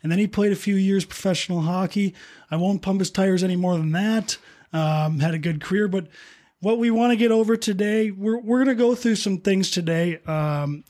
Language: English